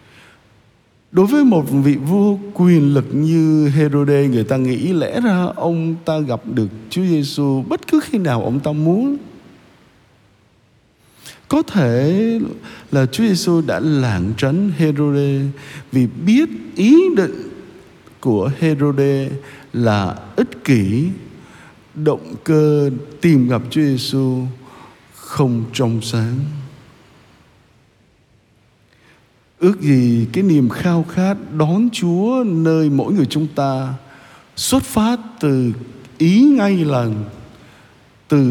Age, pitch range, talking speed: 60-79, 125-170 Hz, 115 wpm